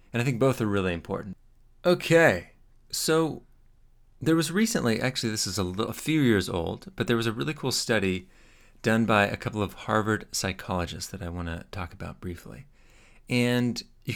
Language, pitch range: English, 95-120 Hz